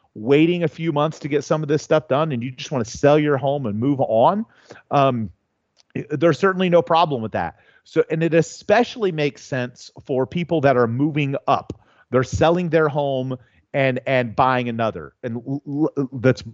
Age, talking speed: 30-49, 185 wpm